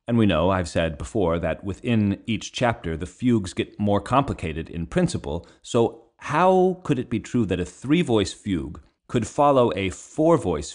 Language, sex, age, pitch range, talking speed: English, male, 30-49, 90-125 Hz, 175 wpm